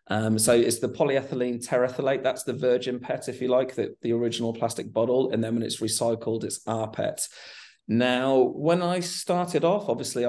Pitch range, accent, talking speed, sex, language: 115-135 Hz, British, 185 wpm, male, English